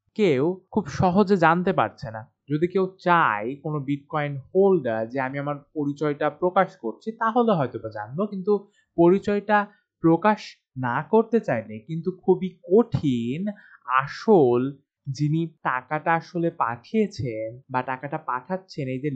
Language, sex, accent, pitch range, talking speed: Bengali, male, native, 140-190 Hz, 80 wpm